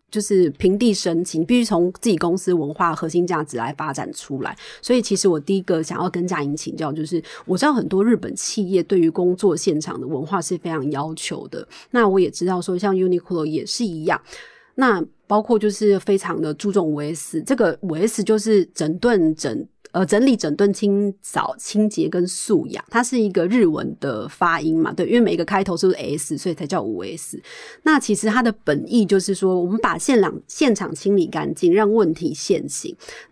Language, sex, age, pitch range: Chinese, female, 30-49, 170-220 Hz